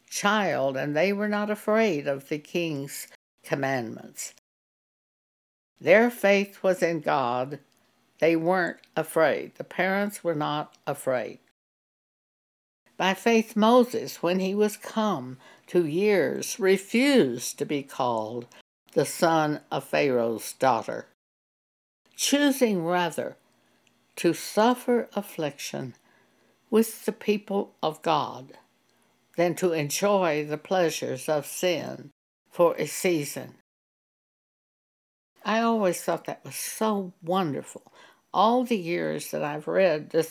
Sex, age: female, 60-79